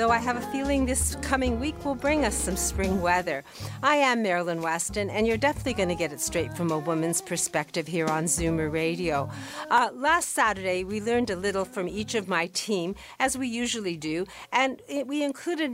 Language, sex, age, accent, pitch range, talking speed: English, female, 50-69, American, 165-230 Hz, 205 wpm